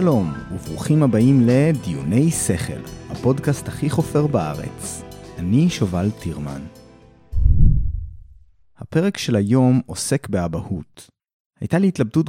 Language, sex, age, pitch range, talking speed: Hebrew, male, 30-49, 95-140 Hz, 100 wpm